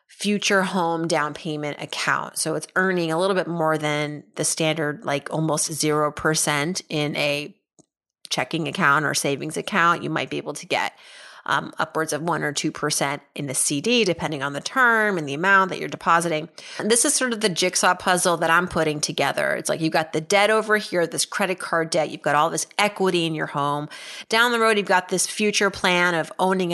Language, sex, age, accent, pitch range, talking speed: English, female, 30-49, American, 155-195 Hz, 205 wpm